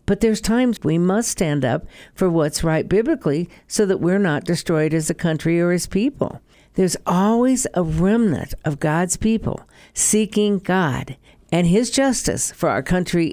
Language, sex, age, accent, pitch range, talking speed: English, female, 60-79, American, 150-205 Hz, 165 wpm